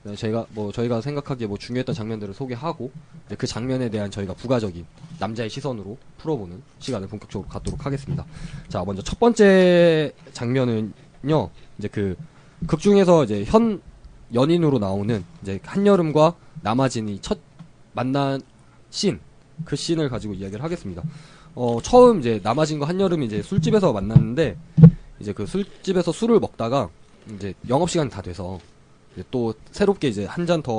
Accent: native